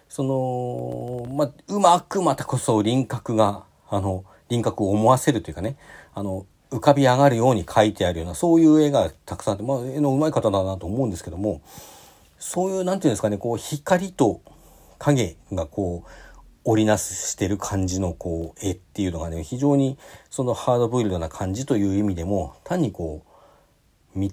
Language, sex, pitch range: Japanese, male, 90-145 Hz